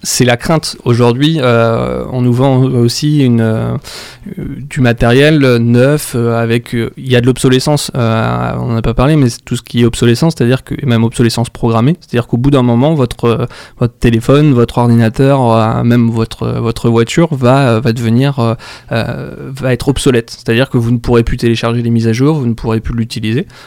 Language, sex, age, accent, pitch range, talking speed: French, male, 20-39, French, 115-135 Hz, 210 wpm